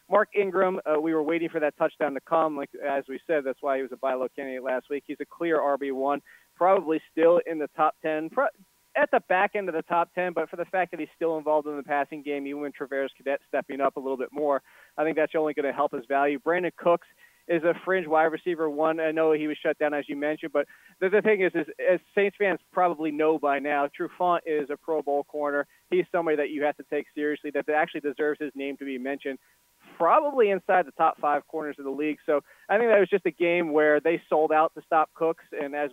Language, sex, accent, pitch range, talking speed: English, male, American, 145-170 Hz, 255 wpm